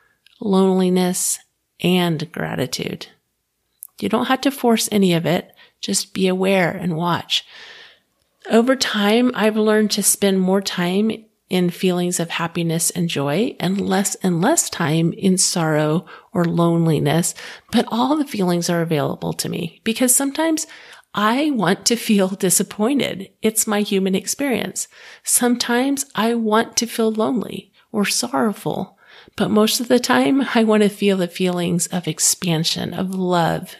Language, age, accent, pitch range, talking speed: English, 40-59, American, 175-220 Hz, 145 wpm